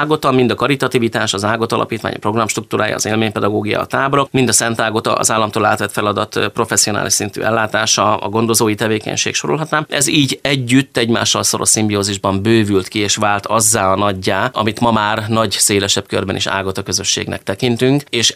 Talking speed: 170 wpm